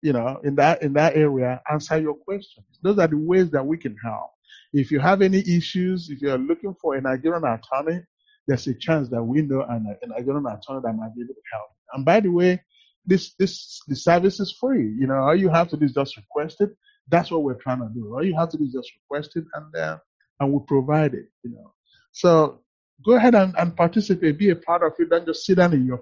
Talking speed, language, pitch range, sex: 250 wpm, English, 120-165 Hz, male